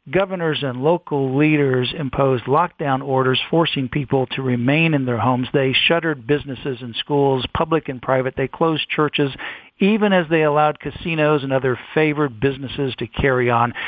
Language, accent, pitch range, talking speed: English, American, 135-175 Hz, 160 wpm